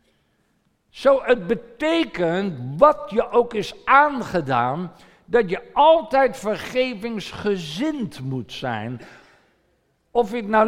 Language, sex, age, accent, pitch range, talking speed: Dutch, male, 60-79, Dutch, 175-270 Hz, 100 wpm